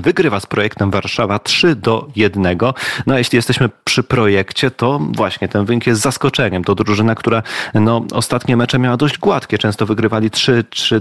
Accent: native